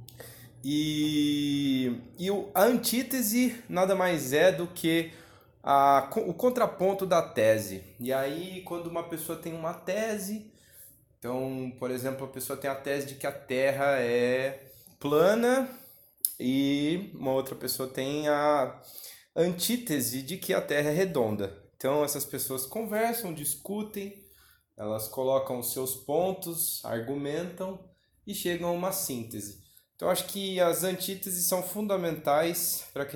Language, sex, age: English, male, 20-39